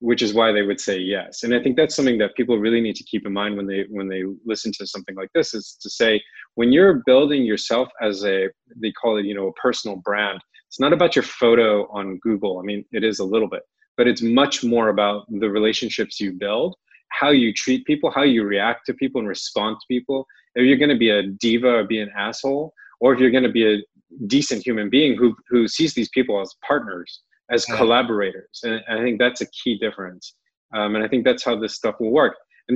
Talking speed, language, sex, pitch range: 235 wpm, English, male, 105-125 Hz